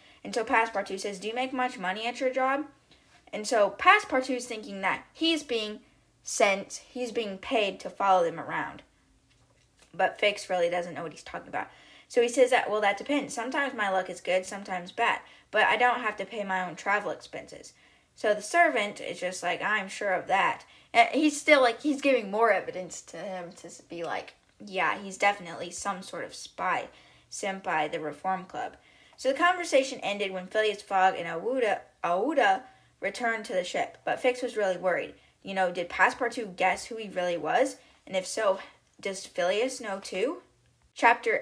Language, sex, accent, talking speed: English, female, American, 190 wpm